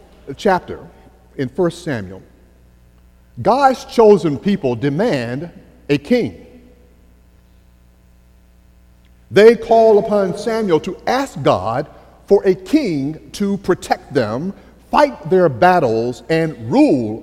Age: 50-69